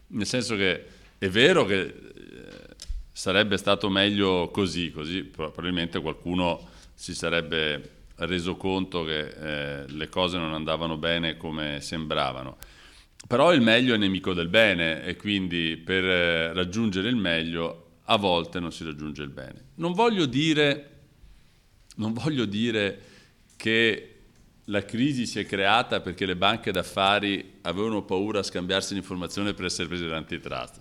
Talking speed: 140 wpm